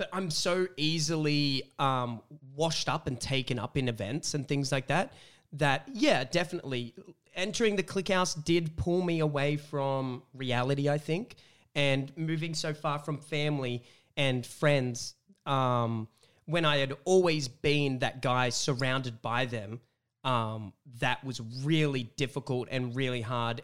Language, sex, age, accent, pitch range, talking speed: English, male, 30-49, Australian, 125-160 Hz, 145 wpm